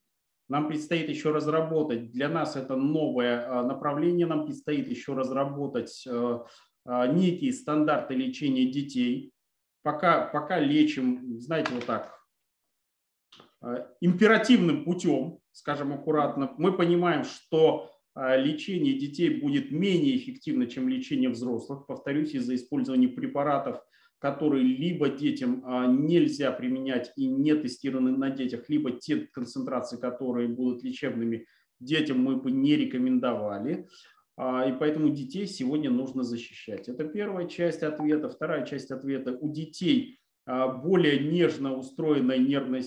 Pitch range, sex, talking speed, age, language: 130-180 Hz, male, 115 wpm, 30-49, Russian